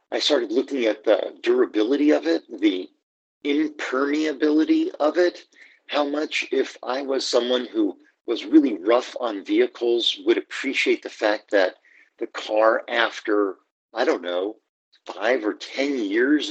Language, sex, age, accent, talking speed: English, male, 50-69, American, 140 wpm